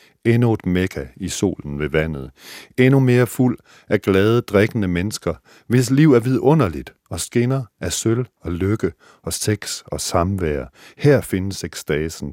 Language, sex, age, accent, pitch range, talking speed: Danish, male, 60-79, native, 85-115 Hz, 150 wpm